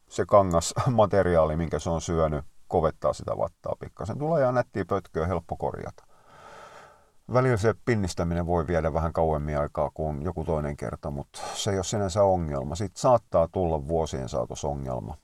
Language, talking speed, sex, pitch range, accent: Finnish, 160 wpm, male, 80-95 Hz, native